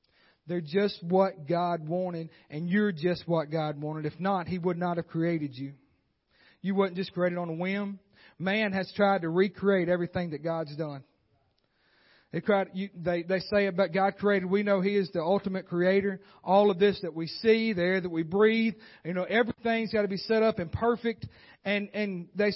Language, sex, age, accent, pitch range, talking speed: English, male, 40-59, American, 180-220 Hz, 190 wpm